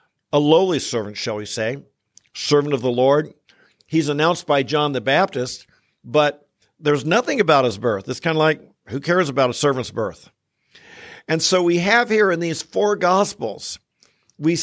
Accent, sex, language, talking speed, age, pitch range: American, male, English, 170 wpm, 50-69, 135-165 Hz